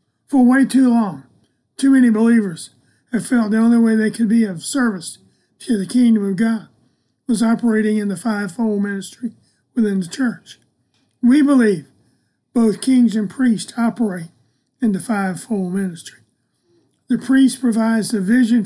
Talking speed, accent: 150 wpm, American